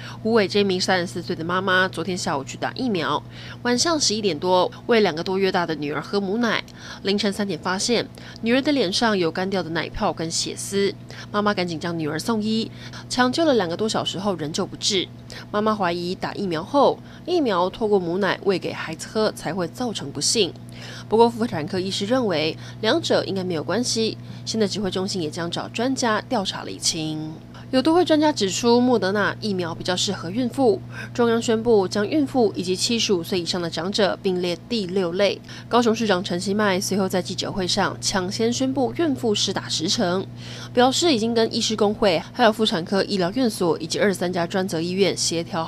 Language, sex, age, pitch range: Chinese, female, 20-39, 170-225 Hz